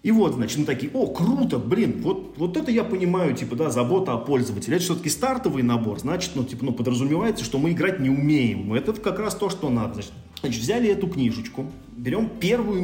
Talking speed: 205 wpm